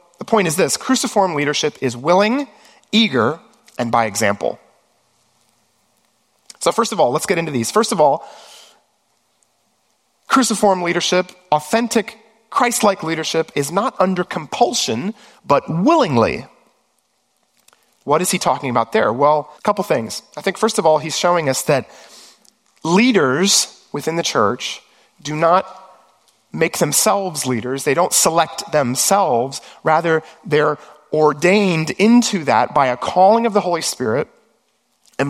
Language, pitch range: English, 150-205 Hz